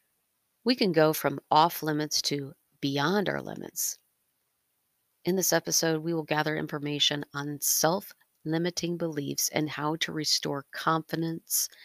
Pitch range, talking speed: 150-185 Hz, 125 wpm